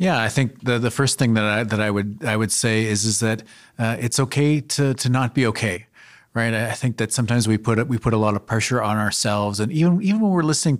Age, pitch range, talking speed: 30-49, 110-130 Hz, 260 wpm